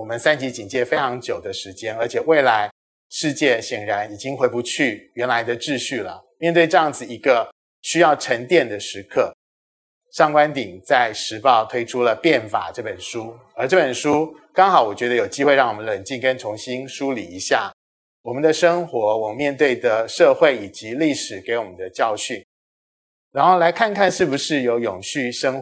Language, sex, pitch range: Chinese, male, 115-155 Hz